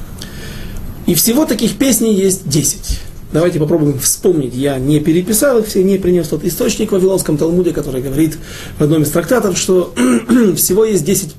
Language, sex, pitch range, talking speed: Russian, male, 130-185 Hz, 165 wpm